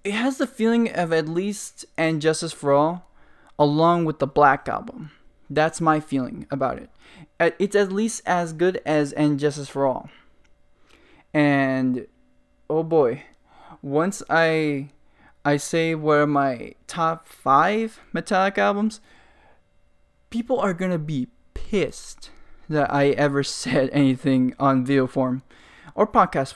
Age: 20-39